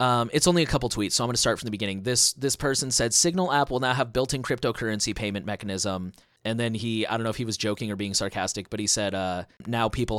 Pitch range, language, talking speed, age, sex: 105-130 Hz, English, 275 wpm, 30-49, male